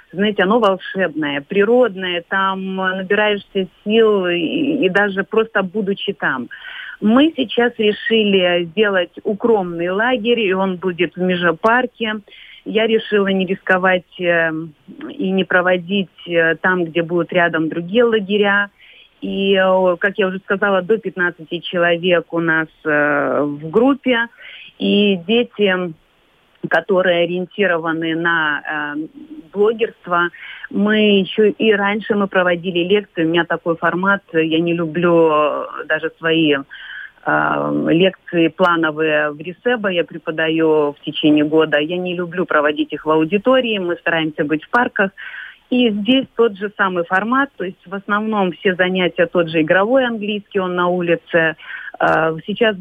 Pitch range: 170-210 Hz